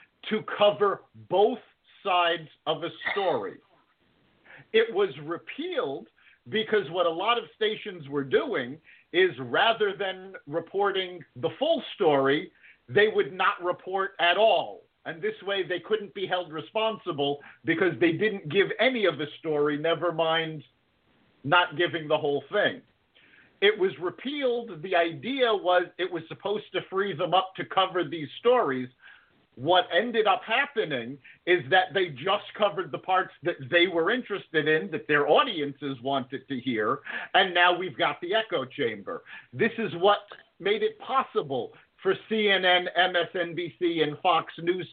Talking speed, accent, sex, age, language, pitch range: 150 wpm, American, male, 50-69, English, 170-220 Hz